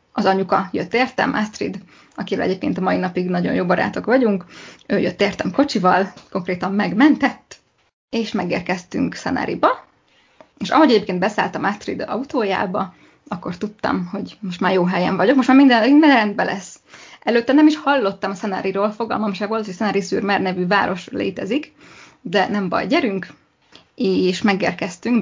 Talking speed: 150 wpm